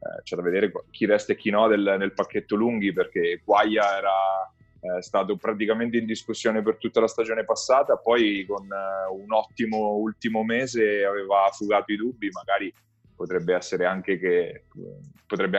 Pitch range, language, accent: 100-110 Hz, Italian, native